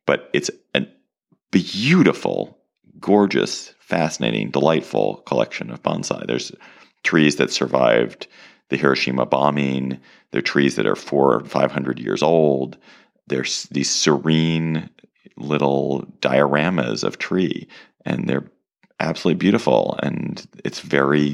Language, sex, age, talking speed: English, male, 40-59, 115 wpm